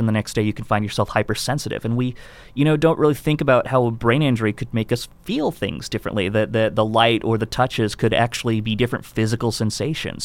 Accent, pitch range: American, 110-140 Hz